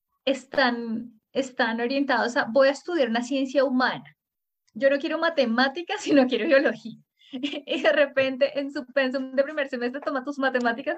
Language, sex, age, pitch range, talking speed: Spanish, female, 10-29, 240-285 Hz, 165 wpm